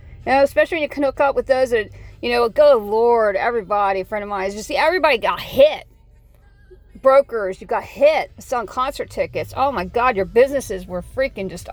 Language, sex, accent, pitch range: English, female, American, 225-330 Hz